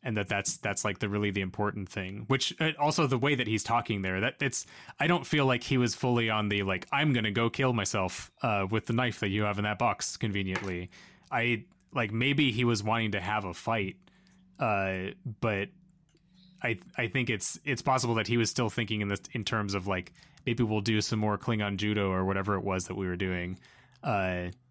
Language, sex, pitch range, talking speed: English, male, 100-130 Hz, 225 wpm